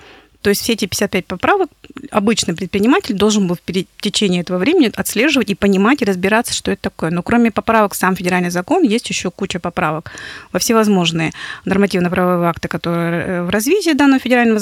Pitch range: 180-215 Hz